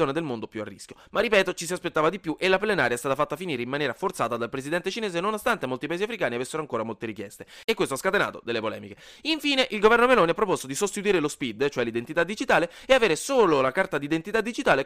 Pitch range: 125-190 Hz